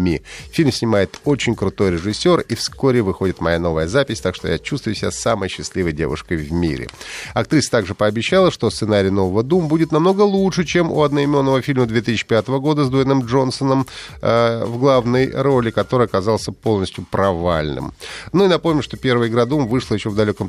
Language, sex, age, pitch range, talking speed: Russian, male, 30-49, 100-135 Hz, 175 wpm